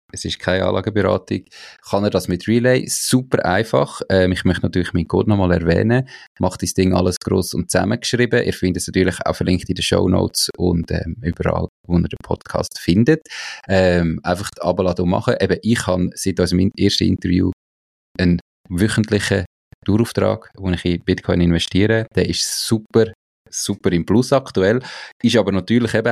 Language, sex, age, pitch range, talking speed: German, male, 20-39, 90-105 Hz, 170 wpm